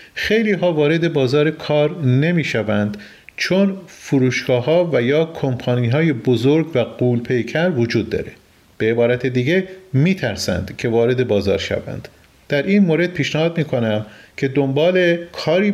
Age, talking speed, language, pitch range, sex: 40-59, 135 wpm, Persian, 120-160 Hz, male